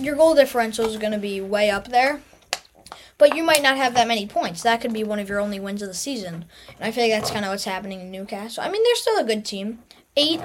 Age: 20-39